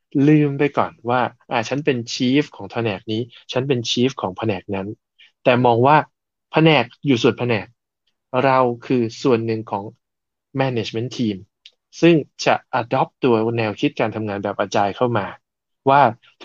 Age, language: 20-39, Thai